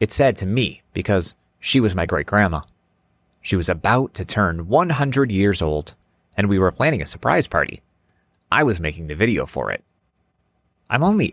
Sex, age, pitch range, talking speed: male, 30-49, 85-125 Hz, 175 wpm